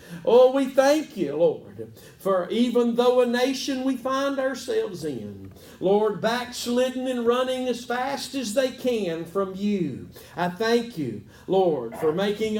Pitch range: 185-245 Hz